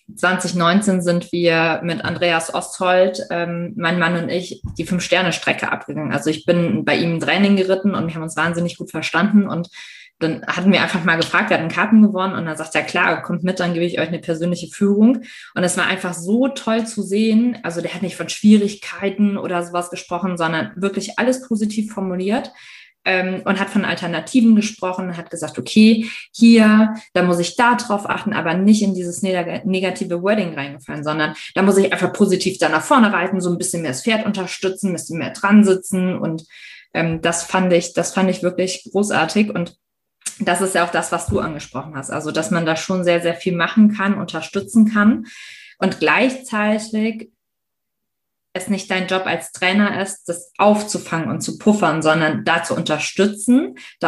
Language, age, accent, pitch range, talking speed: German, 20-39, German, 170-205 Hz, 190 wpm